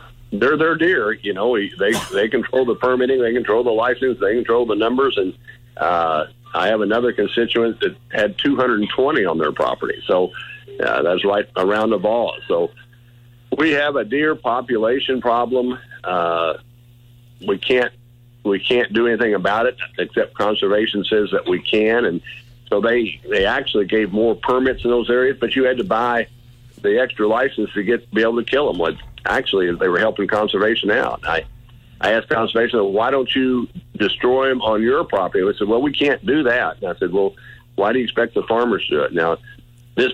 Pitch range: 110-125 Hz